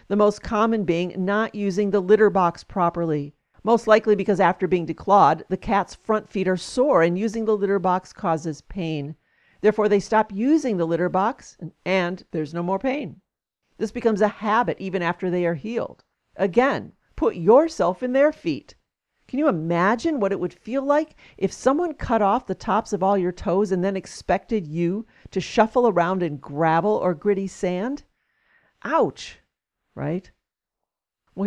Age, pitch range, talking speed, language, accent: 50-69, 175-220 Hz, 170 wpm, English, American